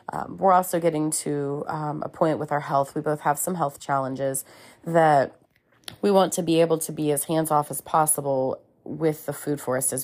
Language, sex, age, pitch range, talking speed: English, female, 30-49, 145-180 Hz, 205 wpm